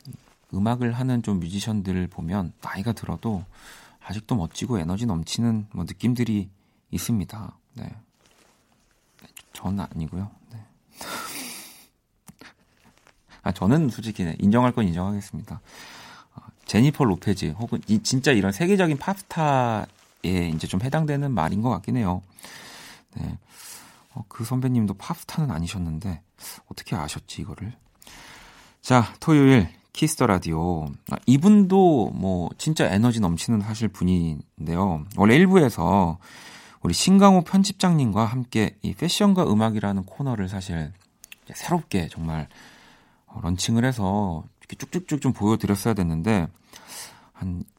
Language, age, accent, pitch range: Korean, 40-59, native, 90-130 Hz